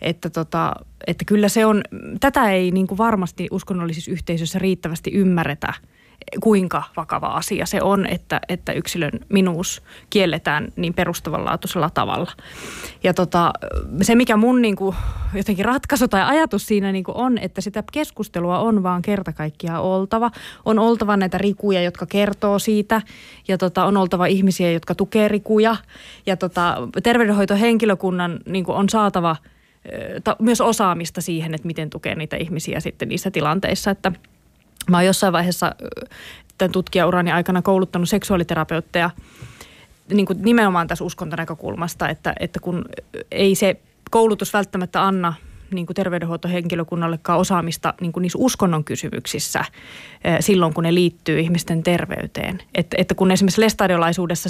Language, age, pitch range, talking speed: Finnish, 20-39, 175-205 Hz, 130 wpm